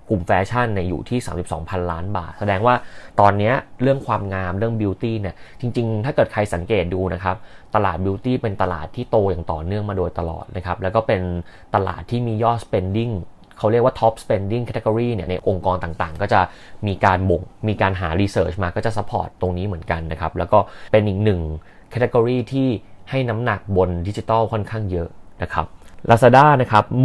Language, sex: Thai, male